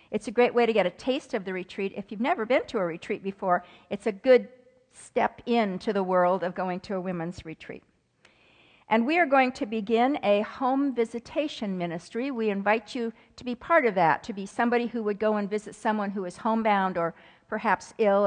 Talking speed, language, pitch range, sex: 215 wpm, English, 180-235 Hz, female